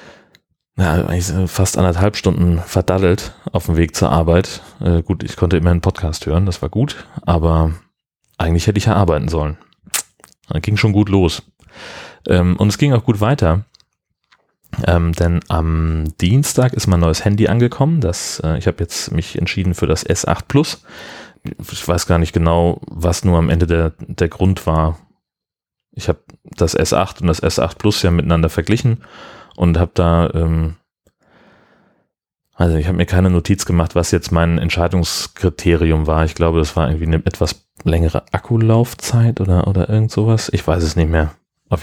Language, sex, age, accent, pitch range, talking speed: German, male, 30-49, German, 85-105 Hz, 170 wpm